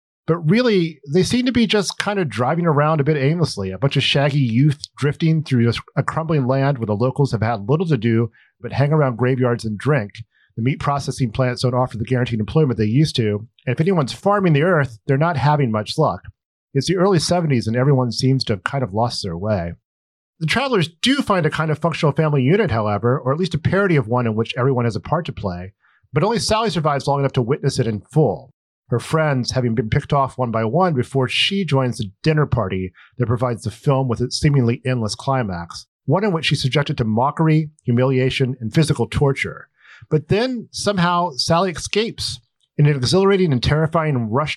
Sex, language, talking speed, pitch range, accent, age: male, English, 215 wpm, 120-155 Hz, American, 40-59